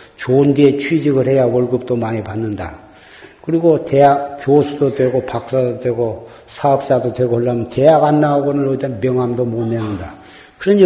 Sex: male